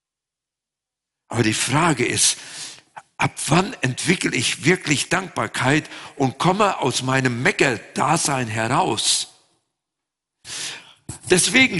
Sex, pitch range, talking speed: male, 125-155 Hz, 85 wpm